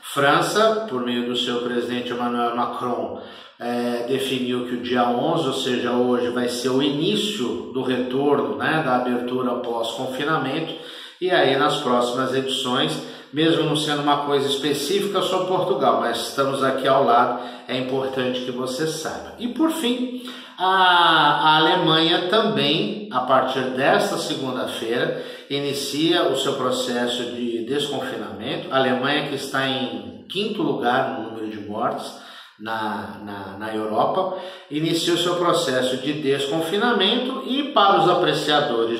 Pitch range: 125-170 Hz